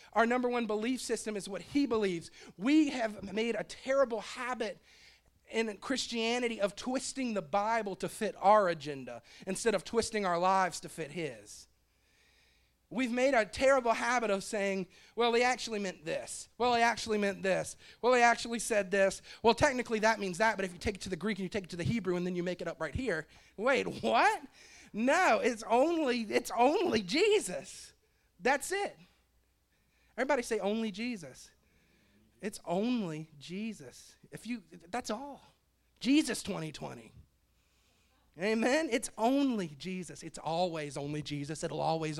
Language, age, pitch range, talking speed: English, 40-59, 155-235 Hz, 165 wpm